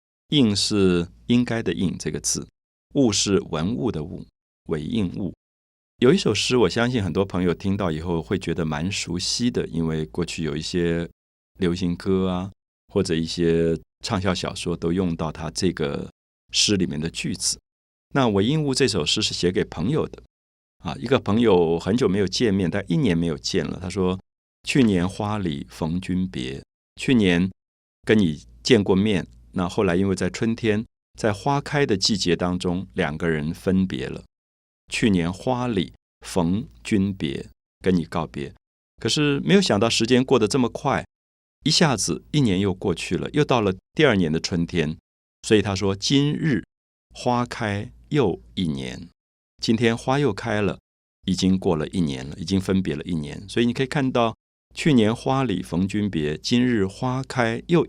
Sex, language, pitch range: male, Chinese, 80-105 Hz